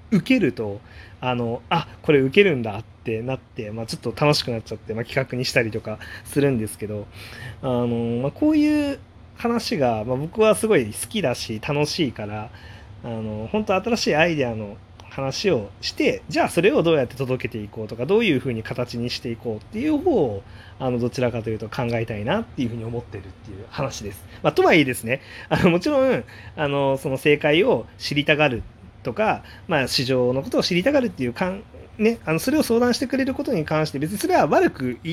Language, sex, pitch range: Japanese, male, 105-160 Hz